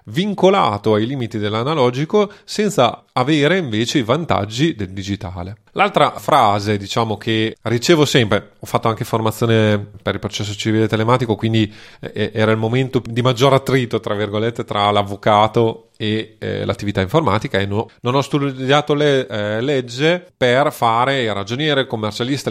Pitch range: 105-130 Hz